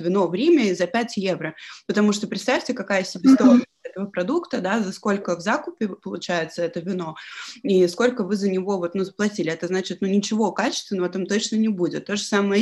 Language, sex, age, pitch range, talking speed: Russian, female, 20-39, 170-210 Hz, 205 wpm